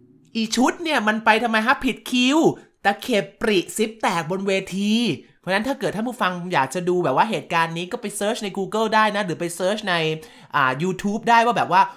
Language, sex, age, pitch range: Thai, male, 20-39, 140-195 Hz